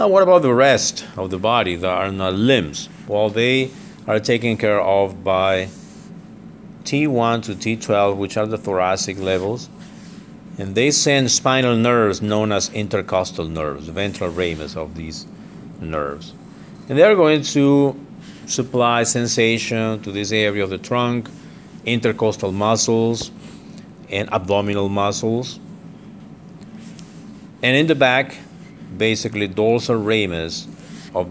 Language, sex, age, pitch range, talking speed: English, male, 50-69, 95-125 Hz, 130 wpm